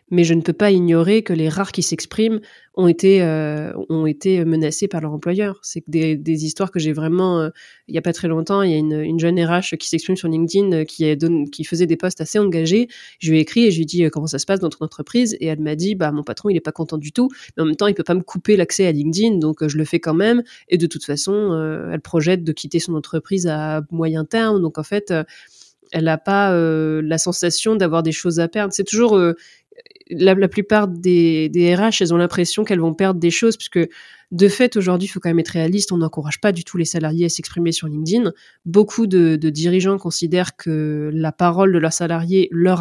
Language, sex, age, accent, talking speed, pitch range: French, female, 20-39, French, 260 wpm, 160-195 Hz